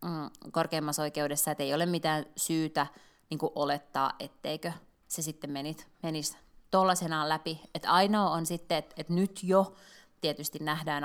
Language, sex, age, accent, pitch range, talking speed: Finnish, female, 30-49, native, 145-175 Hz, 145 wpm